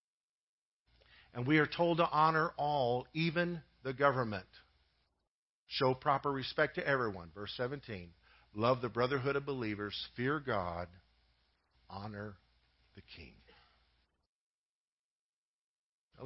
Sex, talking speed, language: male, 105 wpm, English